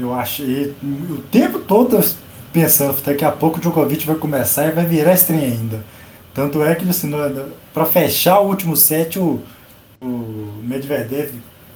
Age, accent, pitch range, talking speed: 20-39, Brazilian, 130-180 Hz, 160 wpm